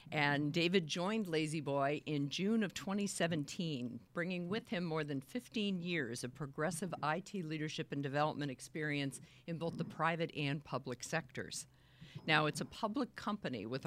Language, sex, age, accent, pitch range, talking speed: English, female, 50-69, American, 140-170 Hz, 155 wpm